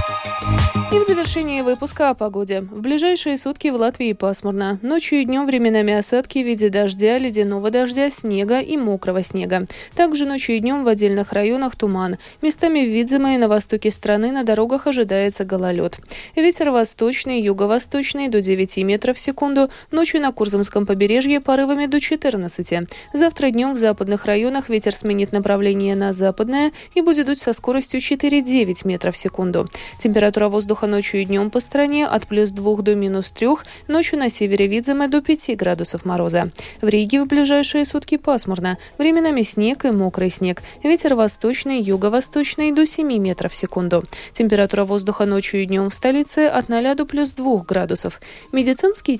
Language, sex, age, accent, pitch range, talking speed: Russian, female, 20-39, native, 200-280 Hz, 160 wpm